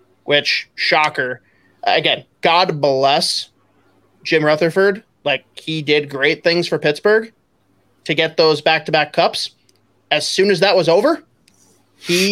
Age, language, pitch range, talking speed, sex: 20-39, English, 135-165 Hz, 135 wpm, male